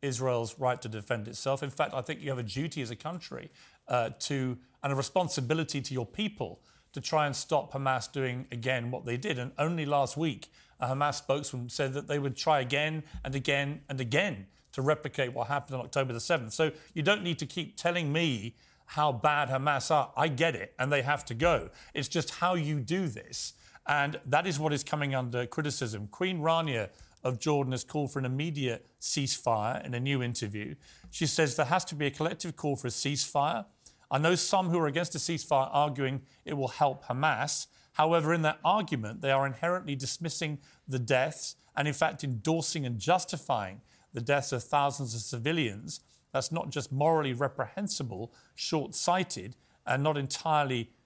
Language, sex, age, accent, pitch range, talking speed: English, male, 40-59, British, 130-155 Hz, 190 wpm